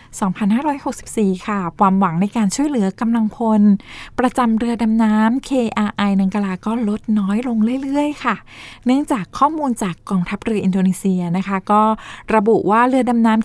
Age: 20-39